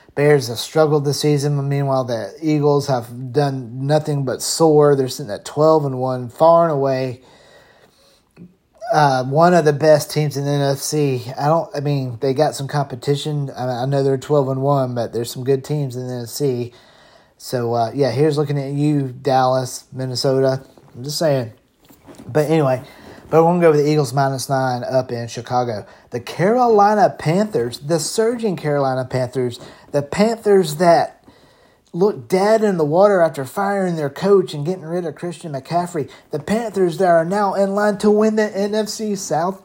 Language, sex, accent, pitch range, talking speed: English, male, American, 130-165 Hz, 175 wpm